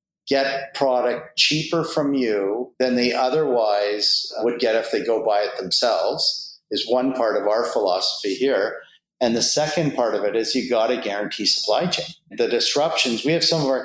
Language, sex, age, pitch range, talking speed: English, male, 50-69, 115-140 Hz, 185 wpm